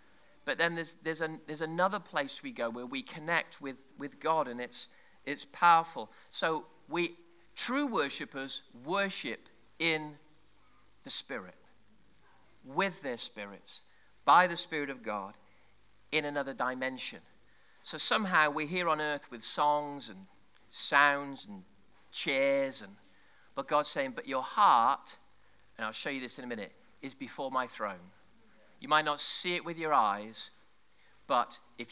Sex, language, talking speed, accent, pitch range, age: male, English, 150 wpm, British, 135-190 Hz, 40-59